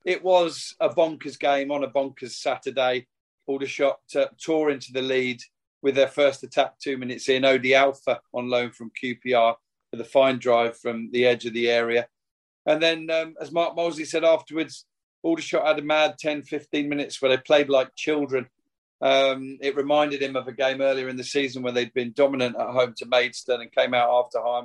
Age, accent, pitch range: 40-59, British, 125-145 Hz